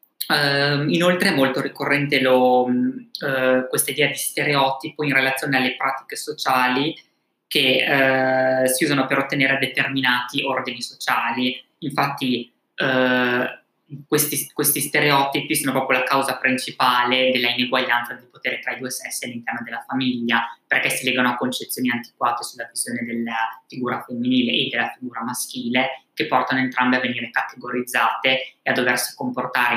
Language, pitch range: Italian, 125-140 Hz